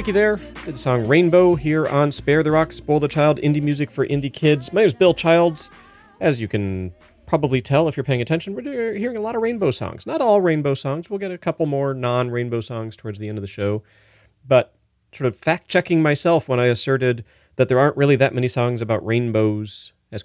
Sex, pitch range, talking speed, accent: male, 110-180 Hz, 215 wpm, American